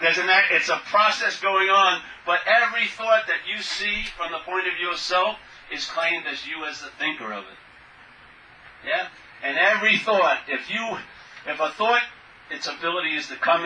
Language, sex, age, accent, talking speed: English, male, 40-59, American, 175 wpm